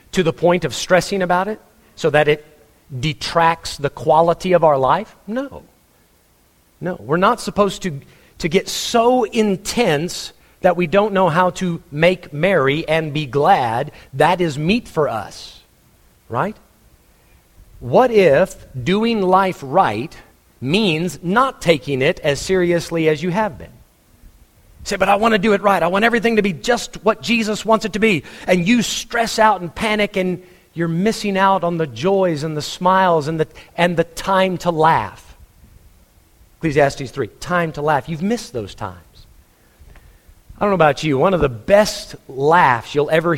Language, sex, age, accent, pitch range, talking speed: English, male, 40-59, American, 145-195 Hz, 170 wpm